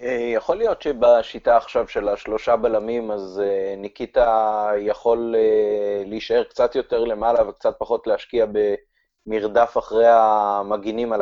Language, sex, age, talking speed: Hebrew, male, 30-49, 110 wpm